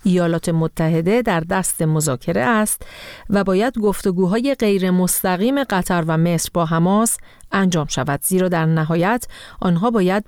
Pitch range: 165-215 Hz